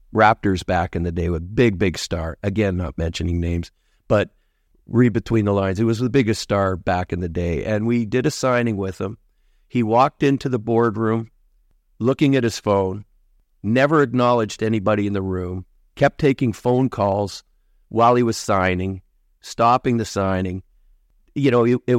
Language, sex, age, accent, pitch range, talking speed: English, male, 50-69, American, 95-125 Hz, 170 wpm